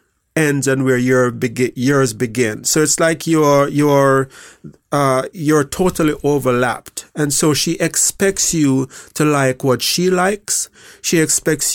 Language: English